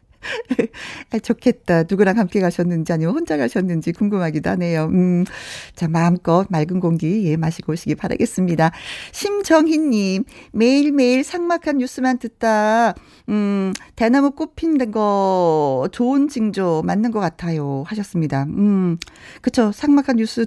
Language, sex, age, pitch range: Korean, female, 40-59, 175-275 Hz